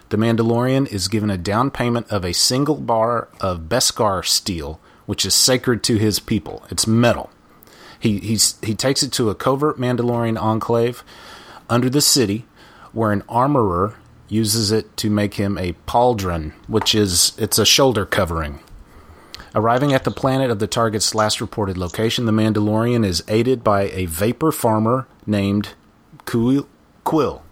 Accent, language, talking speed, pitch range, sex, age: American, English, 155 wpm, 100-120 Hz, male, 30-49